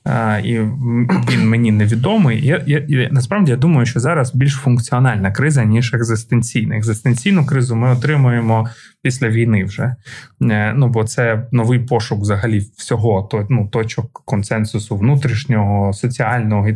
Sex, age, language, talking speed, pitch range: male, 20-39, Ukrainian, 145 wpm, 110-130 Hz